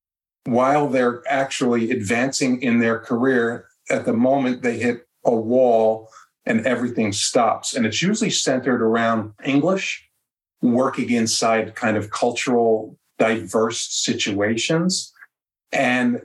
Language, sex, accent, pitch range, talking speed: English, male, American, 110-130 Hz, 115 wpm